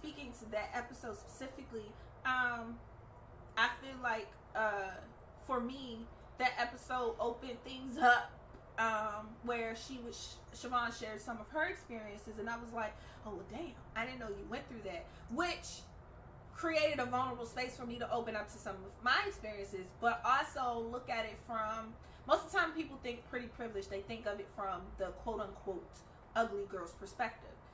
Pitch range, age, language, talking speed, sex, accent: 220-295 Hz, 20-39, English, 170 wpm, female, American